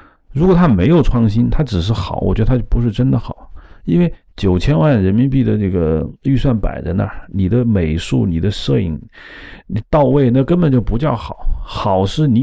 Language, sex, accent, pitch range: Chinese, male, native, 95-130 Hz